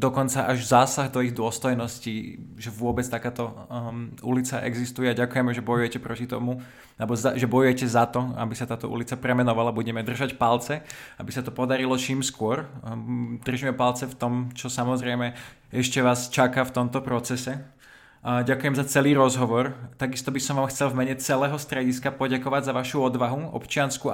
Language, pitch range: Slovak, 125-145 Hz